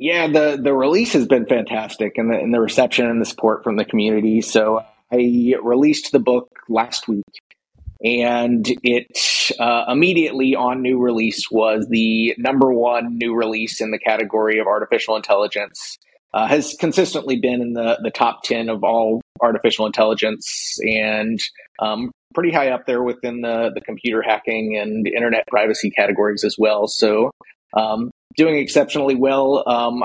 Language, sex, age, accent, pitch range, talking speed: English, male, 30-49, American, 110-135 Hz, 160 wpm